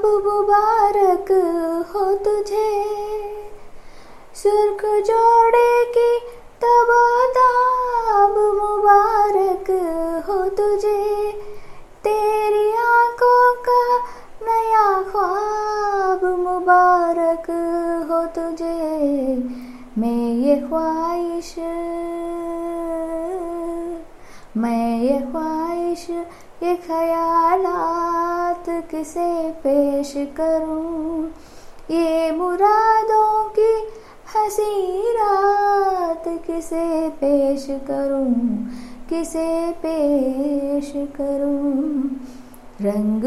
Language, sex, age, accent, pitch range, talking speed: Hindi, female, 20-39, native, 315-415 Hz, 55 wpm